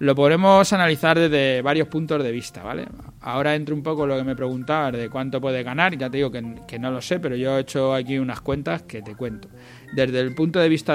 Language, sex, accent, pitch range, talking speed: Spanish, male, Spanish, 125-160 Hz, 245 wpm